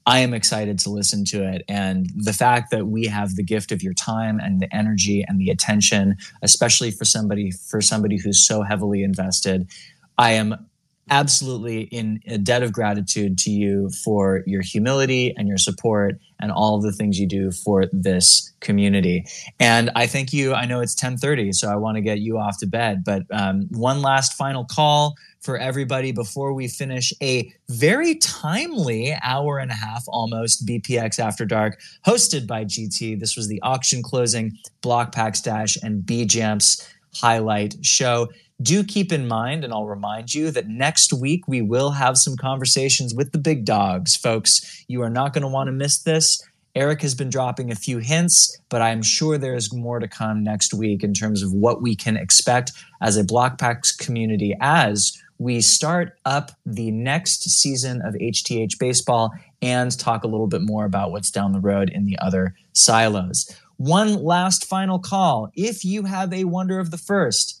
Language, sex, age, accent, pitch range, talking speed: English, male, 20-39, American, 105-135 Hz, 185 wpm